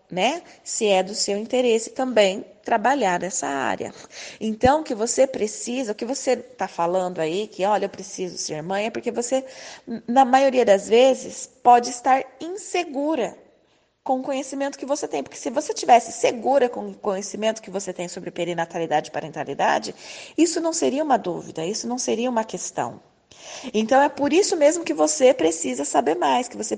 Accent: Brazilian